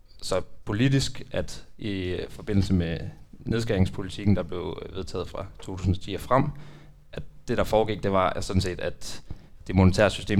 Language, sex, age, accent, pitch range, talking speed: Danish, male, 30-49, native, 95-125 Hz, 155 wpm